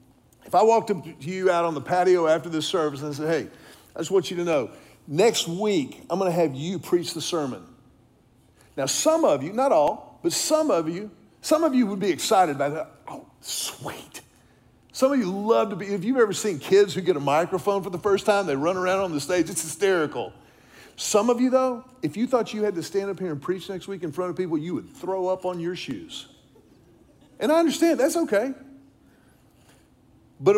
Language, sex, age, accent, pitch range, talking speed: English, male, 50-69, American, 160-200 Hz, 220 wpm